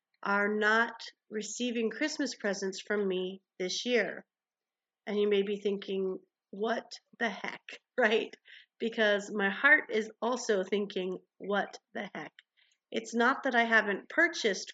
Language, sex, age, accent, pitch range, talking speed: English, female, 40-59, American, 195-225 Hz, 135 wpm